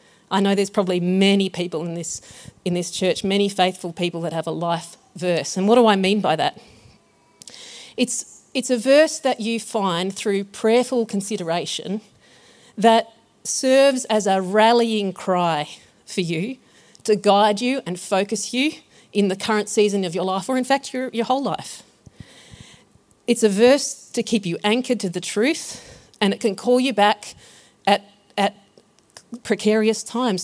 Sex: female